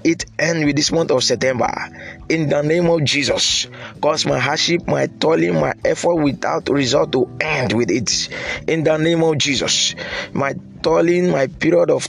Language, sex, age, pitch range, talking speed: English, male, 20-39, 135-175 Hz, 175 wpm